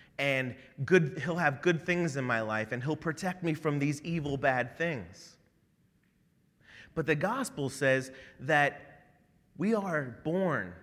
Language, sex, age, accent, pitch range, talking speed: English, male, 30-49, American, 130-165 Hz, 145 wpm